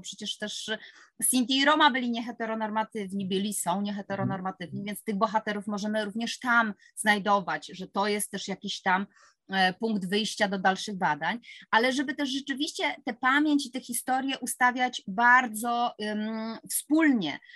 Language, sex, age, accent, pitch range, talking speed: Polish, female, 30-49, native, 200-245 Hz, 145 wpm